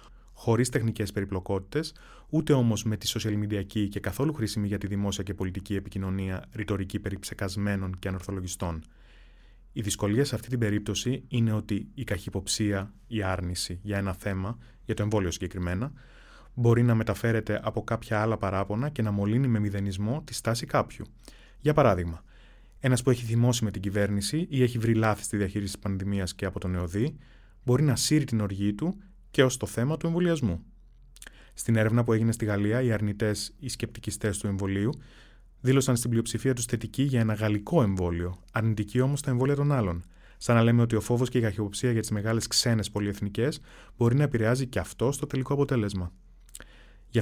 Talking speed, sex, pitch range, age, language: 180 wpm, male, 100-120 Hz, 20-39, Greek